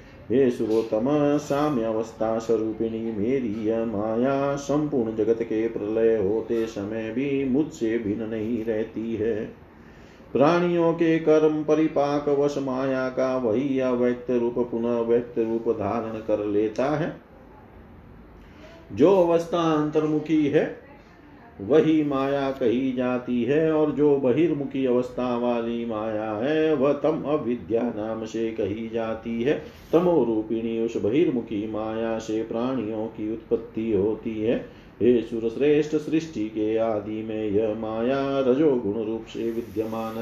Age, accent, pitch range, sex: 40-59, native, 115-140 Hz, male